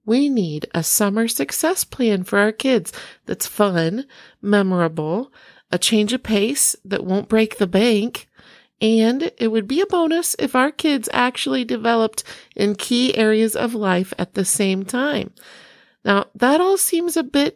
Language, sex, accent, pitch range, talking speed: English, female, American, 185-245 Hz, 160 wpm